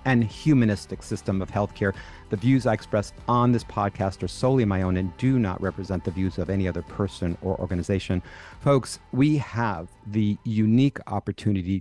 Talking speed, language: 175 wpm, English